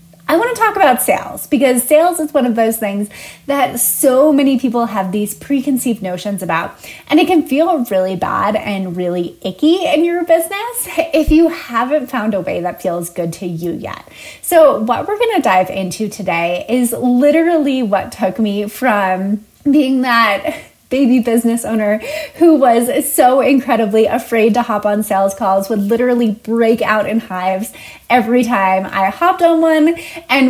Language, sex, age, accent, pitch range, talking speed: English, female, 20-39, American, 200-285 Hz, 175 wpm